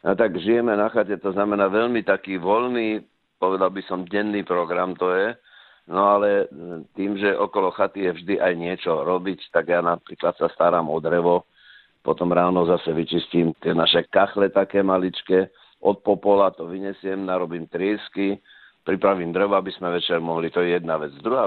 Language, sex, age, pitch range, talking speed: Slovak, male, 50-69, 90-105 Hz, 175 wpm